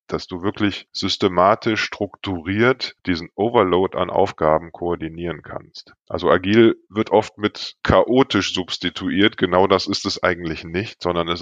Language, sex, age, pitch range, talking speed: German, male, 20-39, 85-105 Hz, 135 wpm